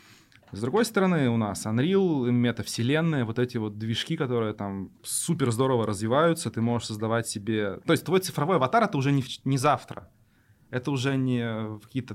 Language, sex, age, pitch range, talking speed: Russian, male, 20-39, 110-135 Hz, 170 wpm